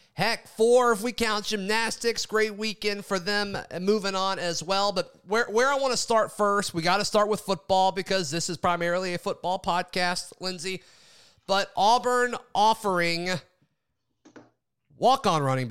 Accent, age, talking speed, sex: American, 30-49, 155 wpm, male